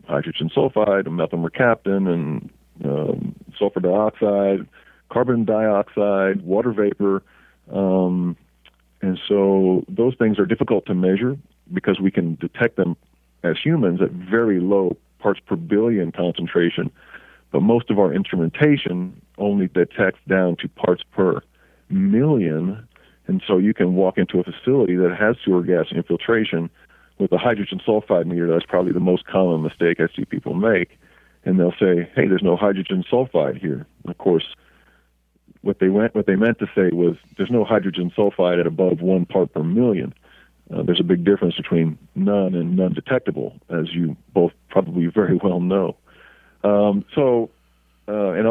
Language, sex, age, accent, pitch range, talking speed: English, male, 50-69, American, 85-105 Hz, 155 wpm